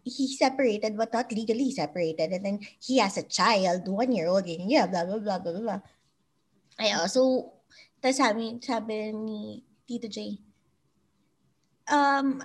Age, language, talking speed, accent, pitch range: 20-39, English, 135 wpm, Filipino, 210-310 Hz